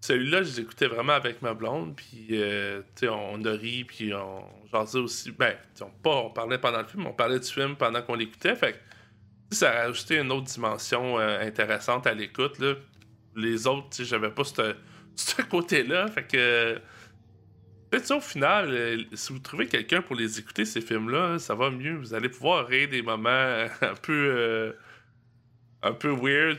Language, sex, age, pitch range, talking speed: French, male, 20-39, 110-140 Hz, 180 wpm